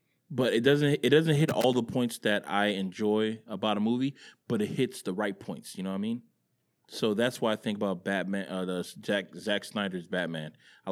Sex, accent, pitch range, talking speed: male, American, 95-125 Hz, 220 wpm